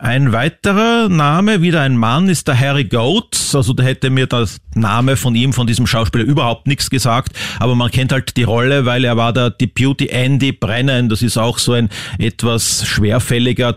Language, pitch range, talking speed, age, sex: German, 110-130 Hz, 190 wpm, 40-59, male